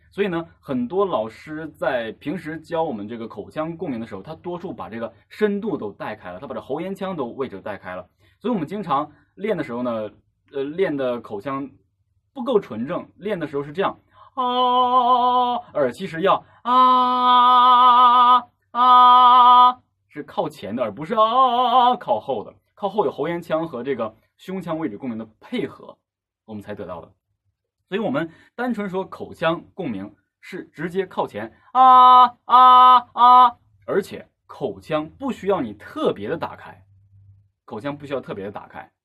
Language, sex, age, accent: Chinese, male, 20-39, native